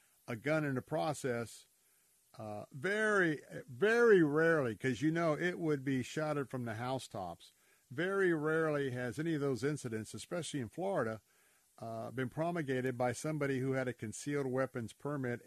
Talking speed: 155 wpm